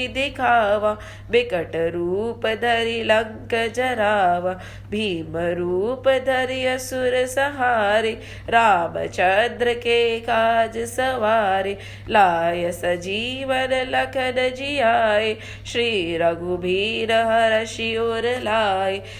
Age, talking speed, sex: 20-39, 70 wpm, female